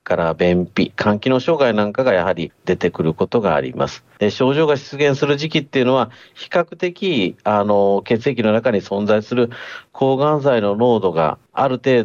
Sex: male